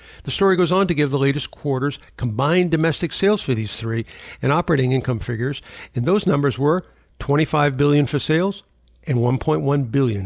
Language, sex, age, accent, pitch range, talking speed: English, male, 60-79, American, 115-165 Hz, 175 wpm